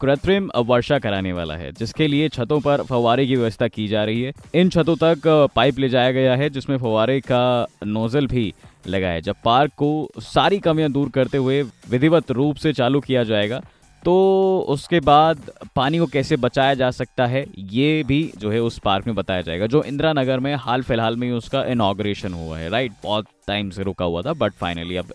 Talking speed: 200 wpm